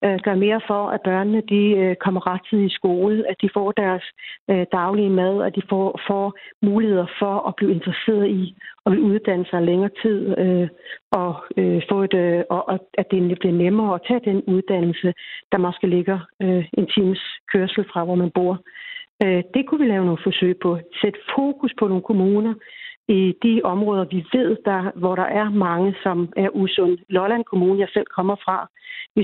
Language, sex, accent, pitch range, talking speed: Danish, female, native, 185-210 Hz, 175 wpm